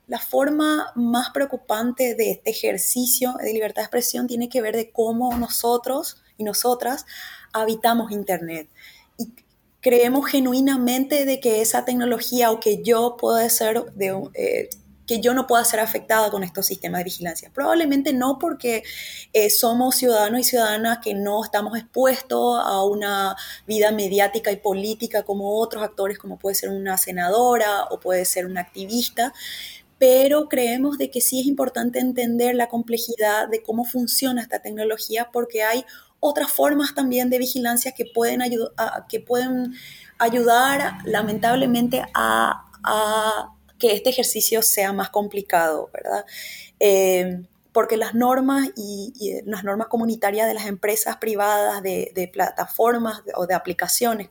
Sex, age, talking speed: female, 20-39, 150 wpm